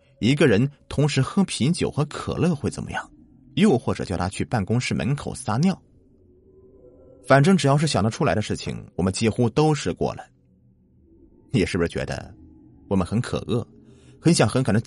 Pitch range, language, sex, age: 90-125 Hz, Chinese, male, 30-49